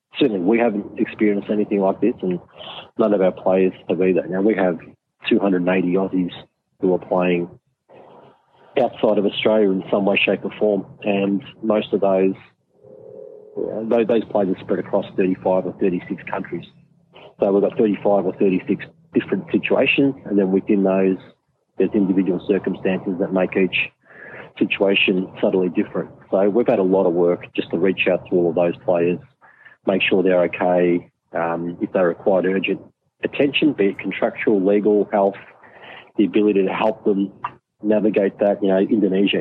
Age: 40-59